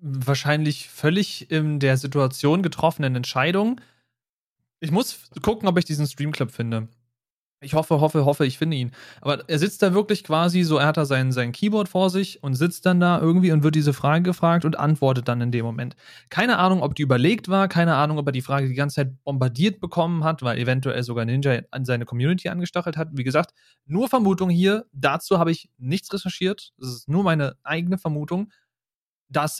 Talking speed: 195 wpm